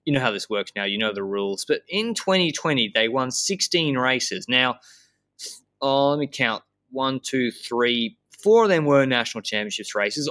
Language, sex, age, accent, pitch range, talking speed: English, male, 20-39, Australian, 110-140 Hz, 185 wpm